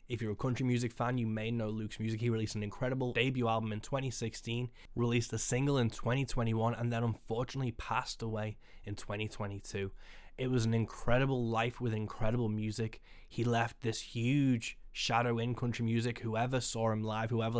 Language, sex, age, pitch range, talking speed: English, male, 10-29, 110-120 Hz, 175 wpm